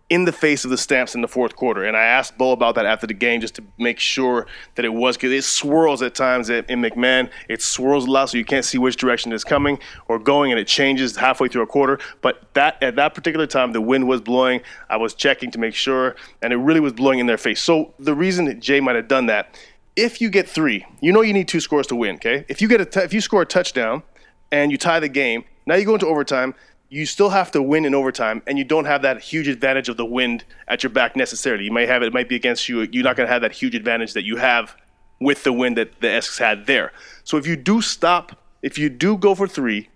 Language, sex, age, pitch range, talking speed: English, male, 30-49, 125-165 Hz, 270 wpm